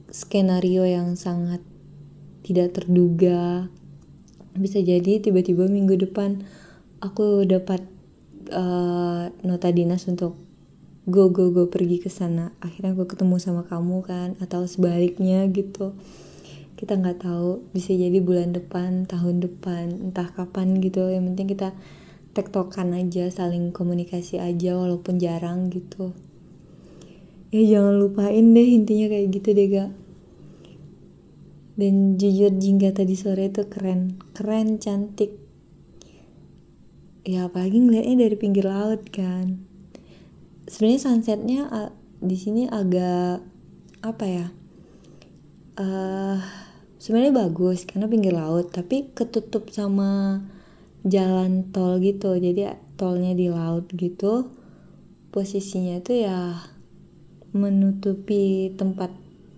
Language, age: Indonesian, 20-39